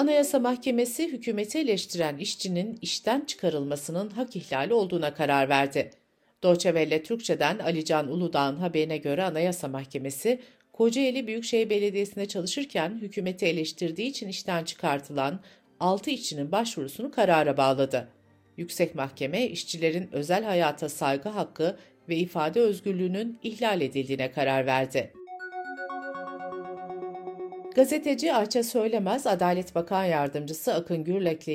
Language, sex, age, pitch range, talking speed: Turkish, female, 60-79, 150-215 Hz, 110 wpm